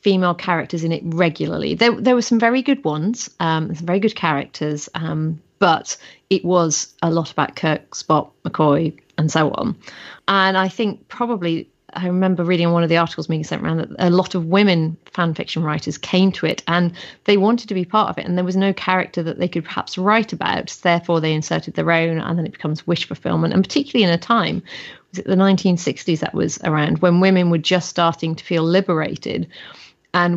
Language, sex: English, female